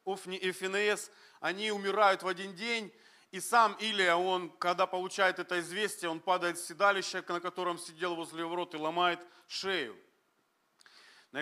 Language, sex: Russian, male